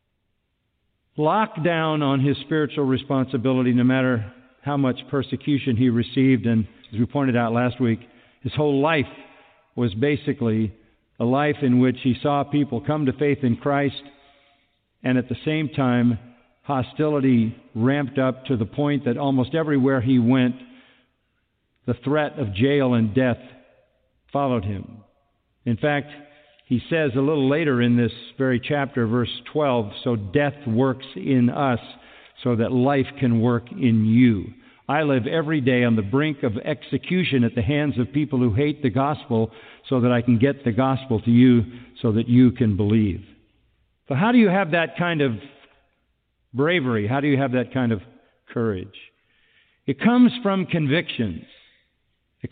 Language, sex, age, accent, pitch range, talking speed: English, male, 50-69, American, 120-145 Hz, 160 wpm